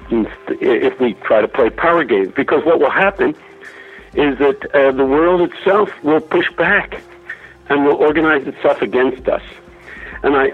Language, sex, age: English, male, 60-79